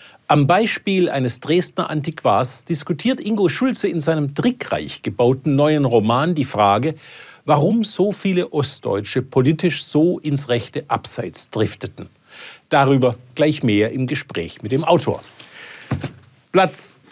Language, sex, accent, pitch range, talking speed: German, male, German, 130-175 Hz, 125 wpm